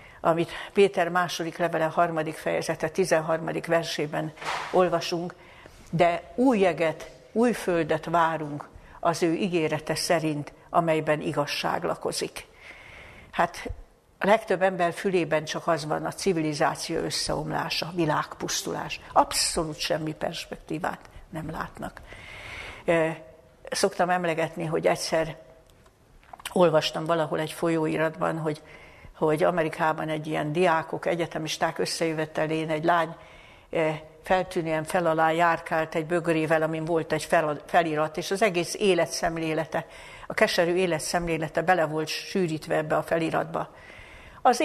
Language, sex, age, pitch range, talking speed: Hungarian, female, 60-79, 155-175 Hz, 110 wpm